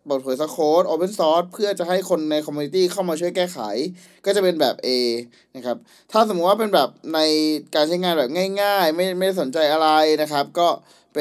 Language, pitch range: Thai, 140-185 Hz